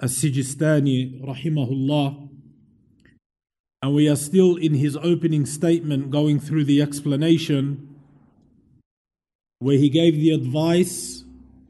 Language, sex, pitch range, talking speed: English, male, 145-180 Hz, 105 wpm